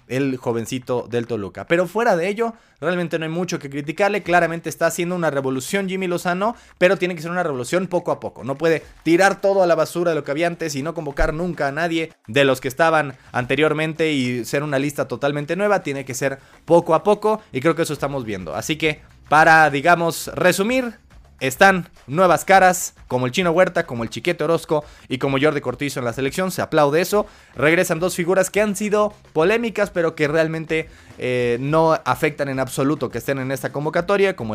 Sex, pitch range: male, 130-175 Hz